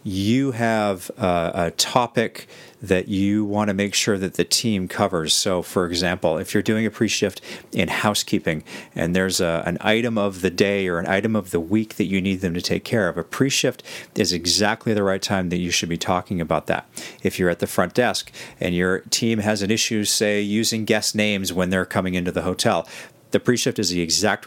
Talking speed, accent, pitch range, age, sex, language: 215 wpm, American, 85-105 Hz, 40-59, male, English